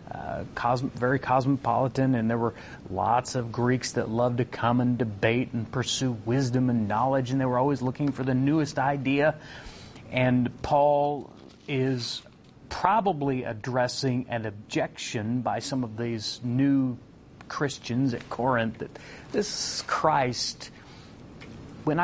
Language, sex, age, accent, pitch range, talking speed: English, male, 30-49, American, 110-130 Hz, 130 wpm